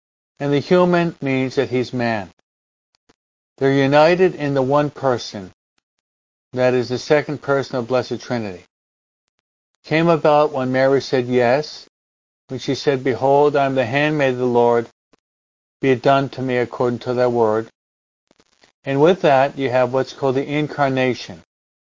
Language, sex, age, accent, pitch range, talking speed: English, male, 50-69, American, 120-150 Hz, 150 wpm